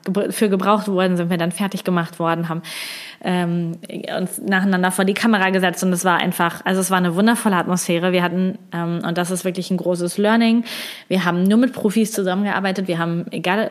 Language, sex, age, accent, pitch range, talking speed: German, female, 20-39, German, 180-205 Hz, 200 wpm